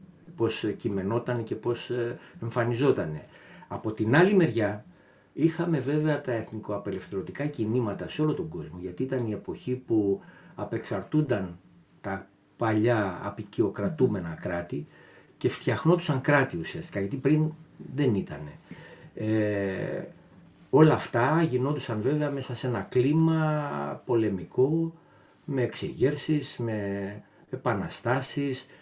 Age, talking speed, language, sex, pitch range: 60-79, 100 wpm, Greek, male, 105-150 Hz